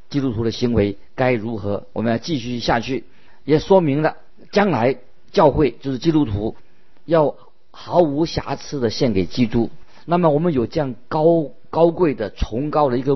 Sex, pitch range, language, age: male, 115-155 Hz, Chinese, 50-69